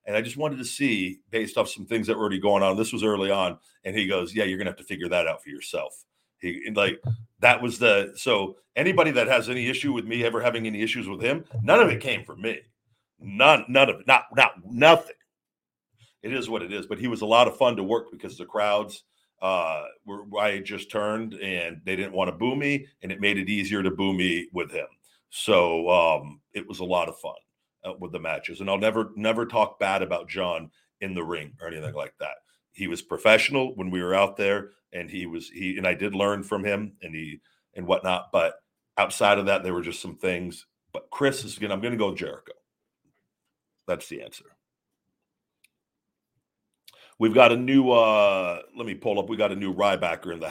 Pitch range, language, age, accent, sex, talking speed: 95-115 Hz, English, 50-69, American, male, 225 wpm